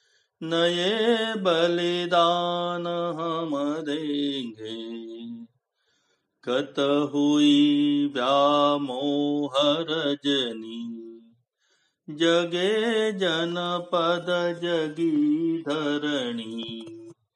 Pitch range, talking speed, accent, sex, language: 145-220 Hz, 40 wpm, native, male, Hindi